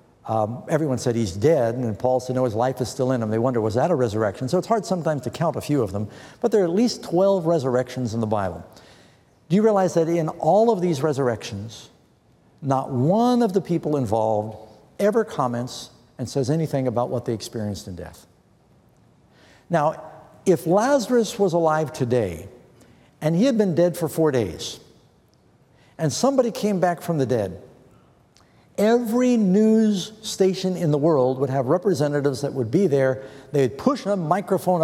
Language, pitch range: English, 130-205 Hz